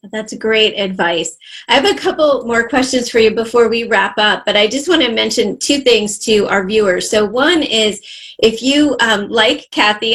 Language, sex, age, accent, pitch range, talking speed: English, female, 30-49, American, 200-240 Hz, 200 wpm